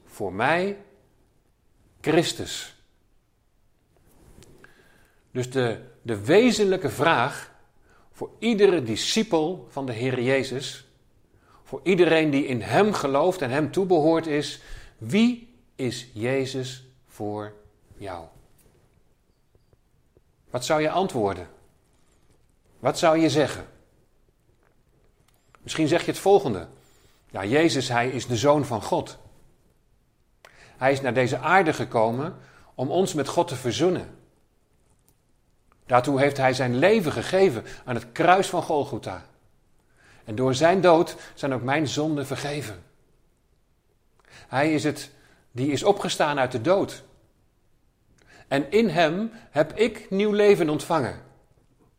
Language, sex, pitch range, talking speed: Dutch, male, 120-160 Hz, 115 wpm